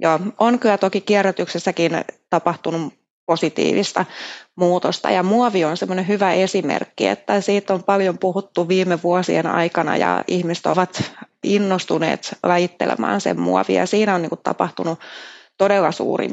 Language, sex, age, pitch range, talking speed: Finnish, female, 30-49, 165-190 Hz, 125 wpm